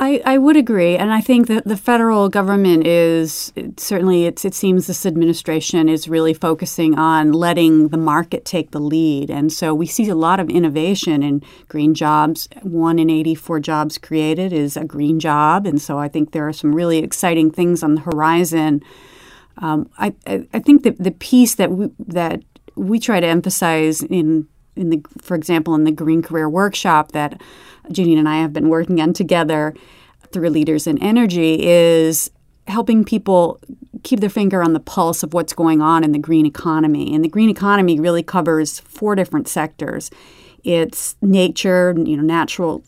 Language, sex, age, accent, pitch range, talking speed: English, female, 40-59, American, 155-185 Hz, 180 wpm